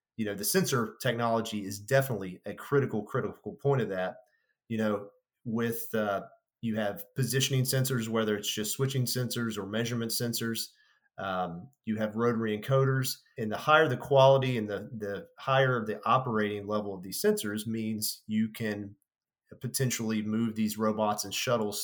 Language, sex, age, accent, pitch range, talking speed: English, male, 40-59, American, 105-125 Hz, 160 wpm